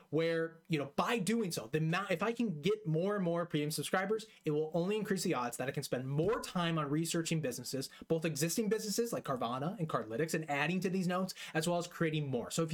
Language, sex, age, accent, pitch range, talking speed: English, male, 20-39, American, 145-180 Hz, 240 wpm